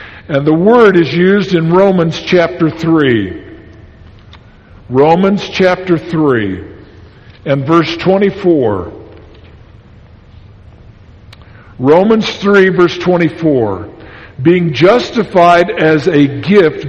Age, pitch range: 50-69, 110-185 Hz